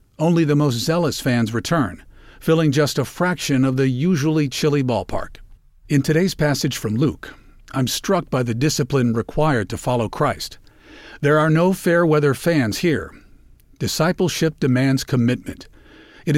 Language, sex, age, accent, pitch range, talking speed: English, male, 50-69, American, 125-155 Hz, 145 wpm